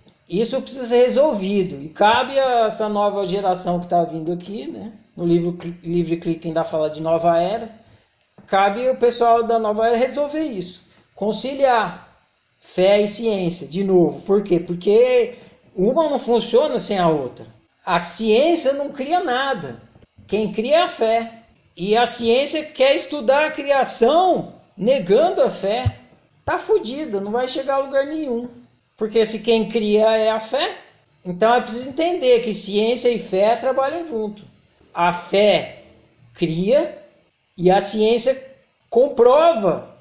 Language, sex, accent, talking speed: Portuguese, male, Brazilian, 150 wpm